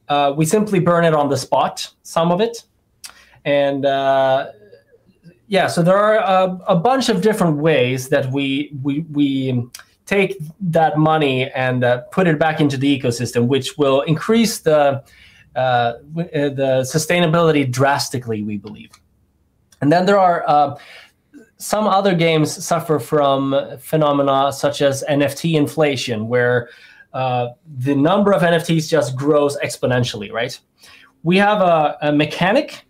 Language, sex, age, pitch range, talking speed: English, male, 20-39, 135-170 Hz, 145 wpm